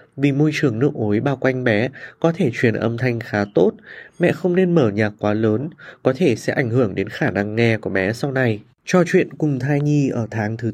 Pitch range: 115-155 Hz